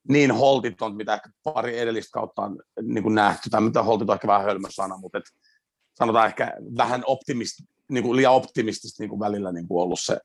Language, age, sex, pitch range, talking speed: Finnish, 40-59, male, 115-145 Hz, 170 wpm